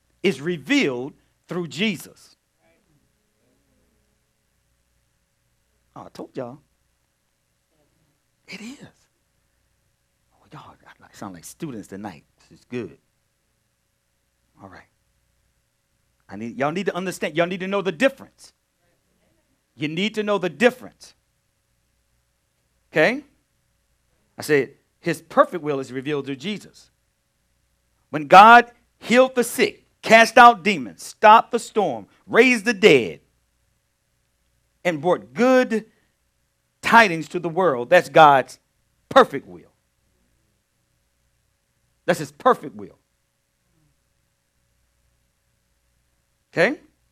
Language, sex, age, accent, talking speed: English, male, 50-69, American, 100 wpm